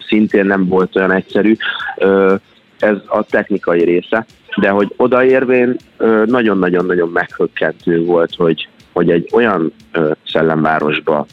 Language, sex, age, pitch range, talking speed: Hungarian, male, 30-49, 85-95 Hz, 105 wpm